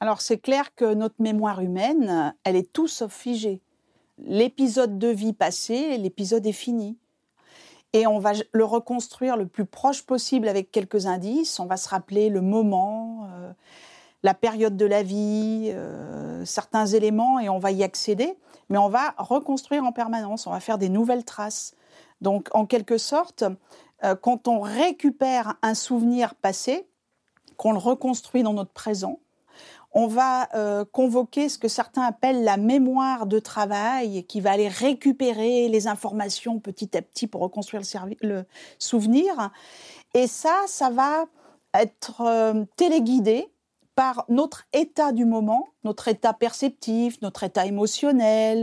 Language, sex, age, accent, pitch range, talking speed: French, female, 40-59, French, 210-260 Hz, 155 wpm